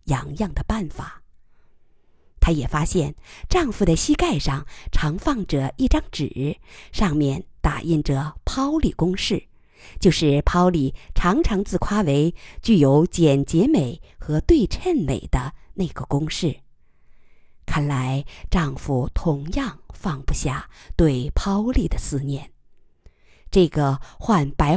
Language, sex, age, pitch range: Chinese, female, 50-69, 135-190 Hz